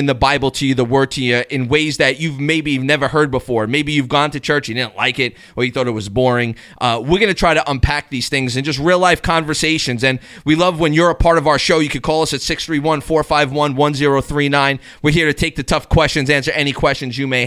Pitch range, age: 130-160 Hz, 30-49